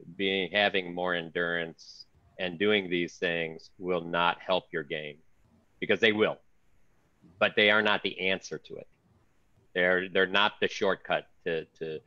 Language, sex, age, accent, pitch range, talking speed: English, male, 40-59, American, 80-95 Hz, 155 wpm